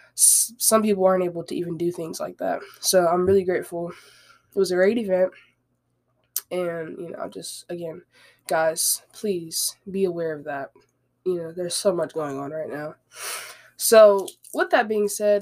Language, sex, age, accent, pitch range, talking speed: English, female, 20-39, American, 175-205 Hz, 170 wpm